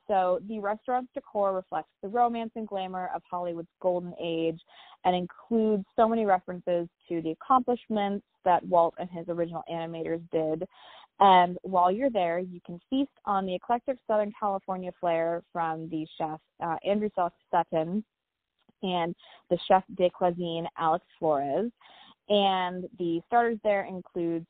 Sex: female